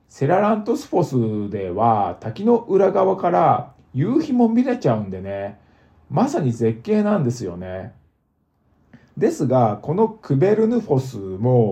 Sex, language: male, Japanese